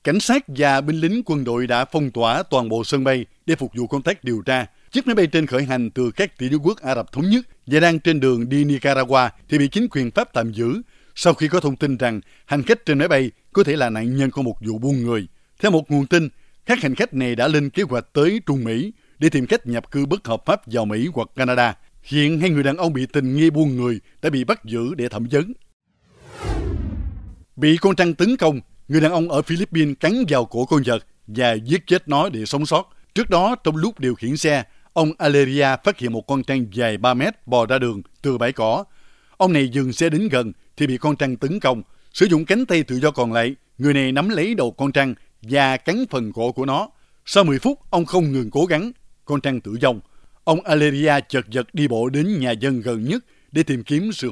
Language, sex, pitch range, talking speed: Vietnamese, male, 120-155 Hz, 240 wpm